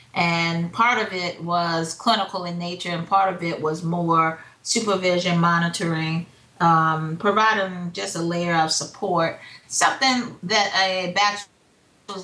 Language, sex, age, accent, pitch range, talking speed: English, female, 30-49, American, 170-195 Hz, 130 wpm